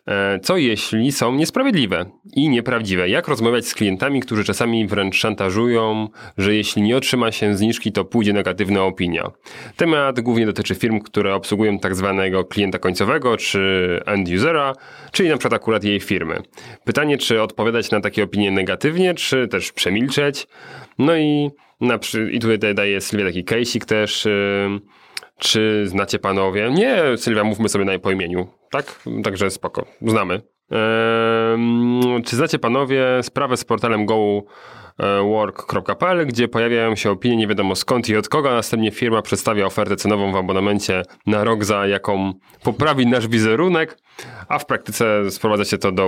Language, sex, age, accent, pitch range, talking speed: Polish, male, 30-49, native, 100-120 Hz, 150 wpm